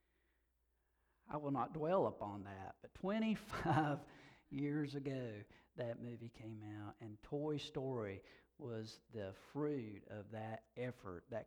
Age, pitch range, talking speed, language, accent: 50-69, 110-140 Hz, 125 wpm, English, American